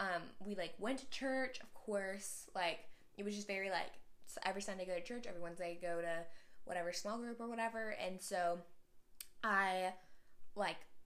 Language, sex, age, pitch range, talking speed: English, female, 10-29, 175-215 Hz, 175 wpm